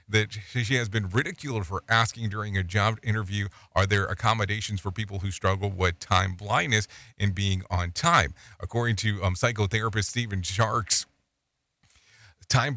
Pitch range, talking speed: 100-120 Hz, 150 wpm